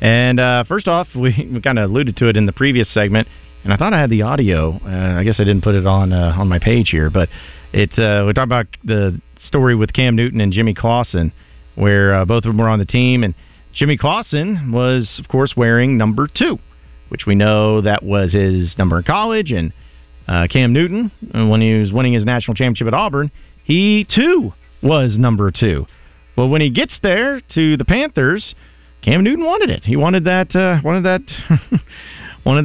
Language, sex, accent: English, male, American